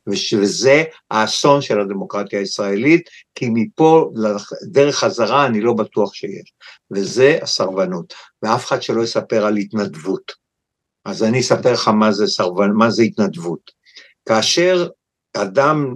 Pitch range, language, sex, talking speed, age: 125-205 Hz, Hebrew, male, 125 wpm, 60-79